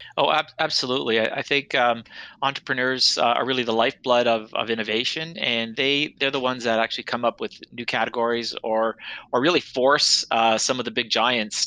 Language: English